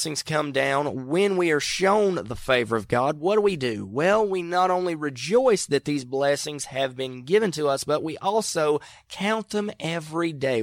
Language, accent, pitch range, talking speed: English, American, 130-180 Hz, 190 wpm